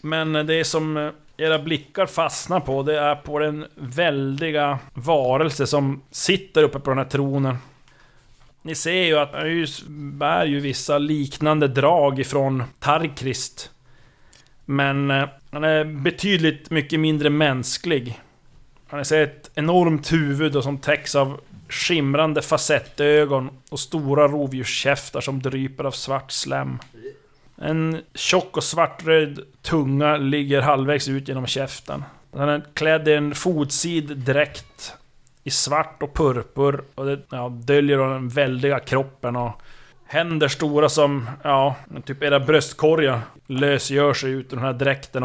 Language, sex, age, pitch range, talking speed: Swedish, male, 30-49, 135-150 Hz, 130 wpm